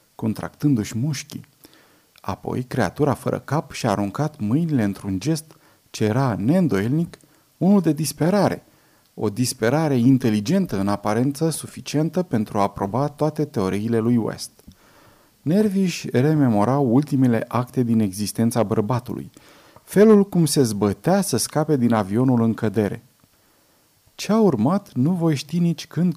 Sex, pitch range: male, 110-155 Hz